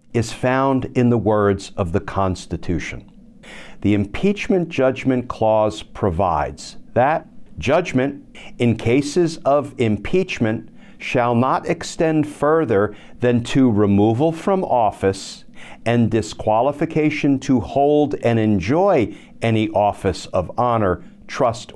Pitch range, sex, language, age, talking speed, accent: 115-190 Hz, male, English, 50-69, 110 wpm, American